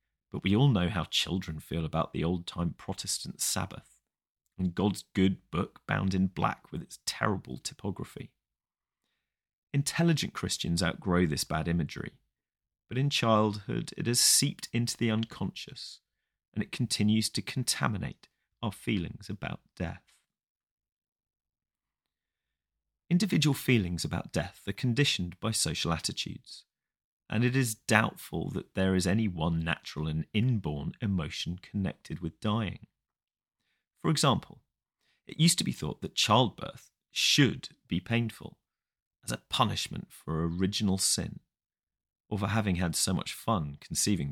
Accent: British